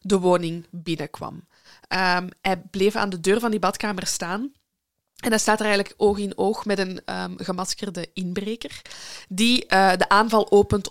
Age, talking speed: 20-39, 170 wpm